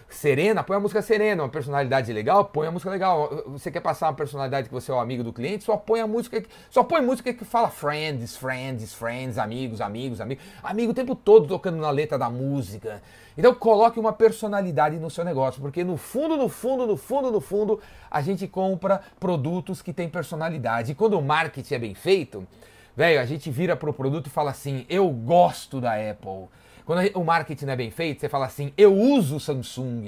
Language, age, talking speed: Portuguese, 30-49, 210 wpm